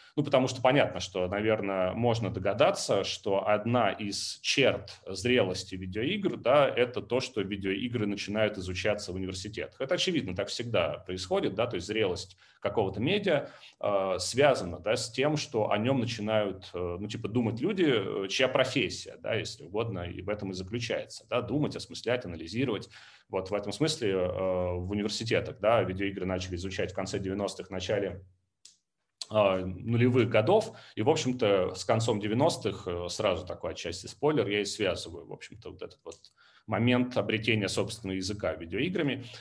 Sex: male